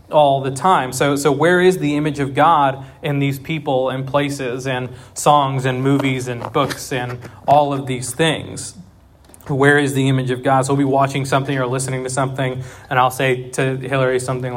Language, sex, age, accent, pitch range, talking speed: English, male, 20-39, American, 125-150 Hz, 200 wpm